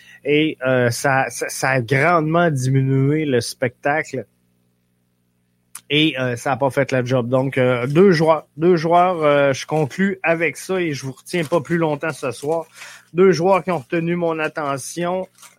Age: 20-39